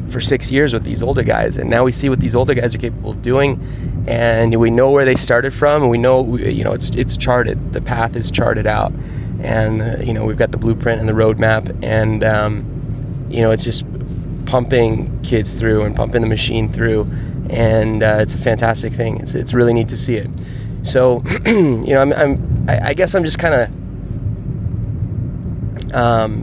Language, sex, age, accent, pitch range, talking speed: English, male, 20-39, American, 110-130 Hz, 200 wpm